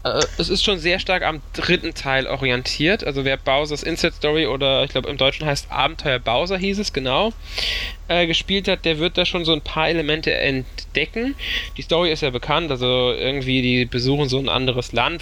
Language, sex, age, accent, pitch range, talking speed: German, male, 10-29, German, 125-155 Hz, 195 wpm